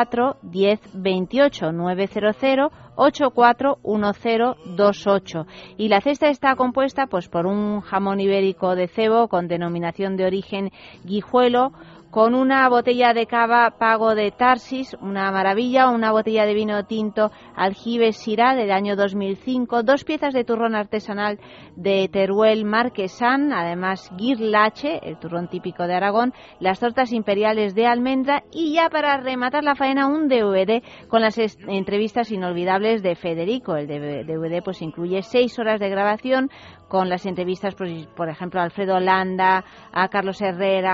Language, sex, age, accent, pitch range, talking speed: Spanish, female, 30-49, Spanish, 190-245 Hz, 135 wpm